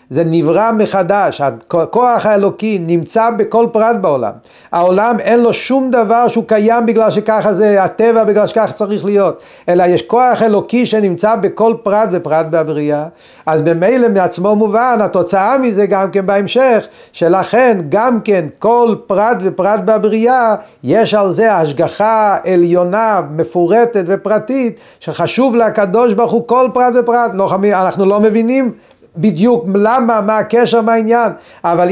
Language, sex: Hebrew, male